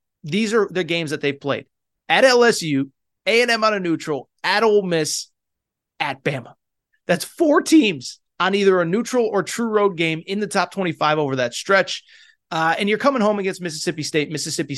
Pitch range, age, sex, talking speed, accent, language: 145-195 Hz, 30-49, male, 185 wpm, American, English